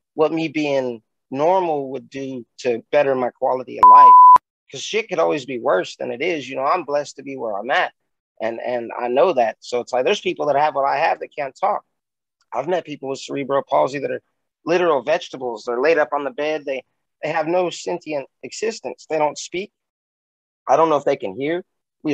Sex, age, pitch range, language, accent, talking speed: male, 30-49, 140-170 Hz, English, American, 220 wpm